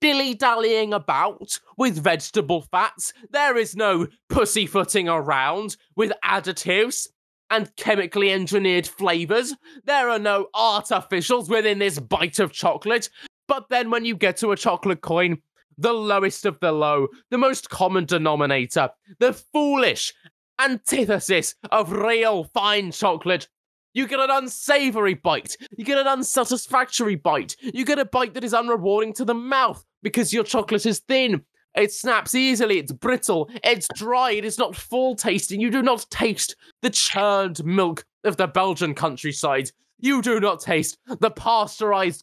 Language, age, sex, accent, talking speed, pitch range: English, 20-39, male, British, 150 wpm, 180-240 Hz